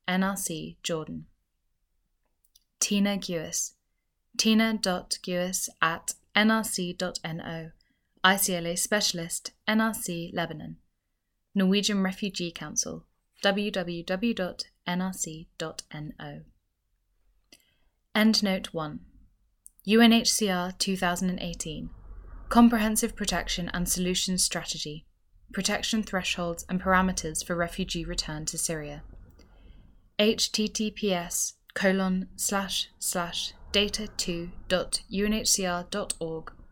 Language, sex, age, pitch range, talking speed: English, female, 20-39, 165-200 Hz, 60 wpm